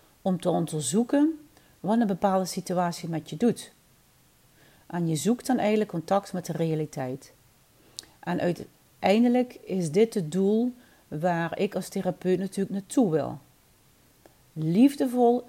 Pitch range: 175-225 Hz